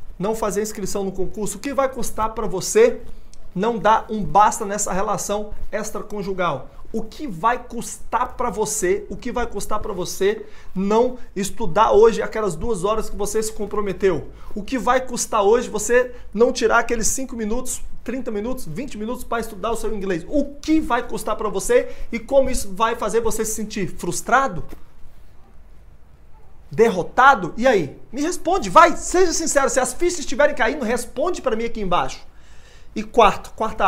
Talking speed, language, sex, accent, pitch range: 170 wpm, Portuguese, male, Brazilian, 180-245 Hz